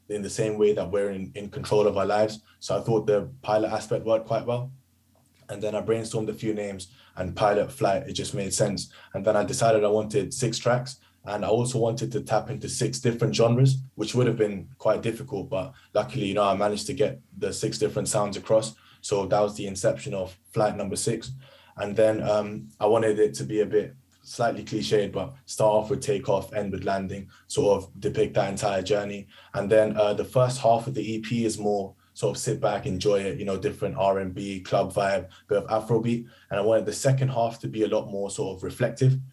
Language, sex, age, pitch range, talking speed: English, male, 20-39, 100-115 Hz, 225 wpm